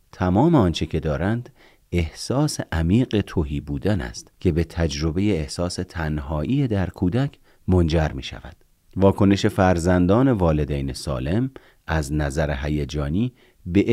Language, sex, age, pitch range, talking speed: Persian, male, 40-59, 80-110 Hz, 115 wpm